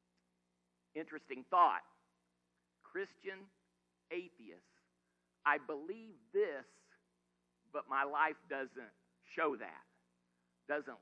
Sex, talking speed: male, 75 wpm